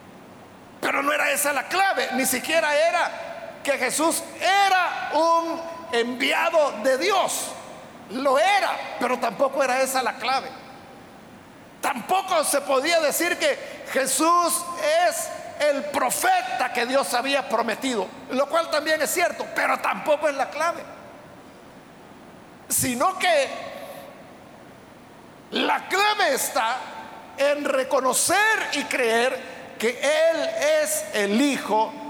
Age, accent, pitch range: 50-69, Mexican, 255-325 Hz